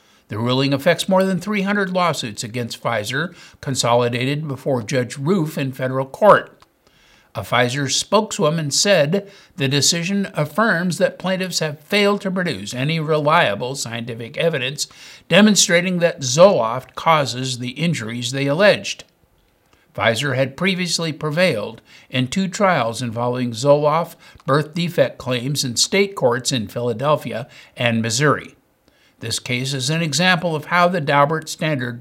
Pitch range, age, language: 130-180 Hz, 60-79, English